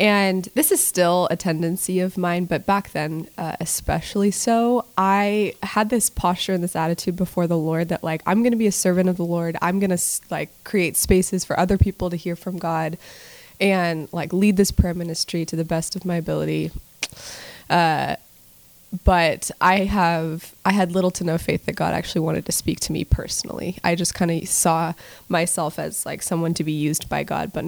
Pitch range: 170-195 Hz